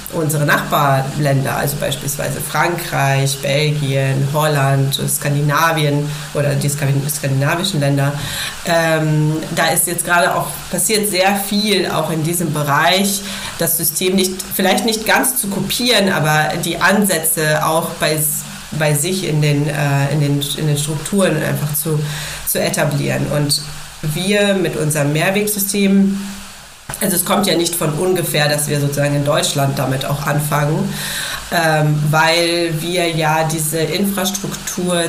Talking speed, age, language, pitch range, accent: 125 wpm, 30-49, German, 145-180 Hz, German